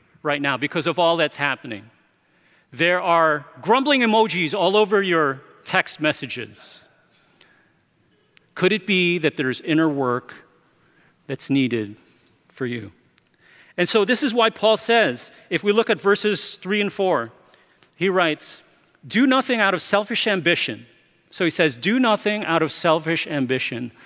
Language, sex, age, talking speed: English, male, 40-59, 145 wpm